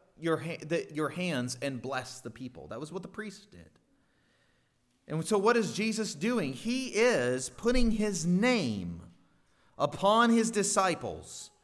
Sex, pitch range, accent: male, 160-215 Hz, American